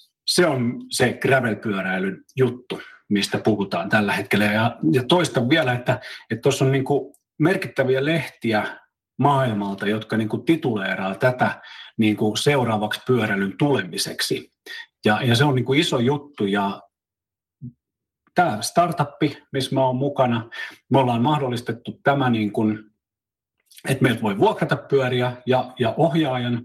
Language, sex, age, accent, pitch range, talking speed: Finnish, male, 40-59, native, 115-145 Hz, 115 wpm